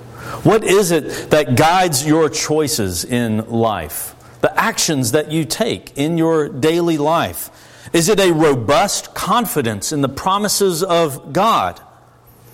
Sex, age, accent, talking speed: male, 50-69, American, 135 wpm